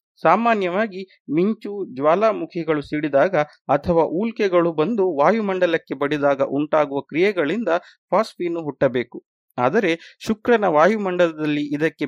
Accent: native